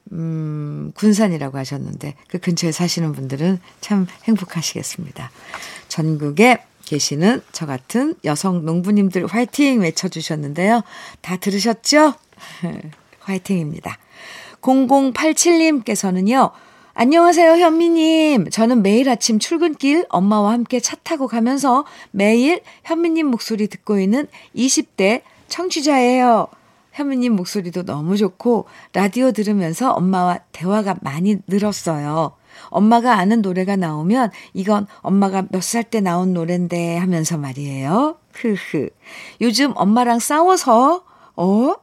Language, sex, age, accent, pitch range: Korean, female, 50-69, native, 175-250 Hz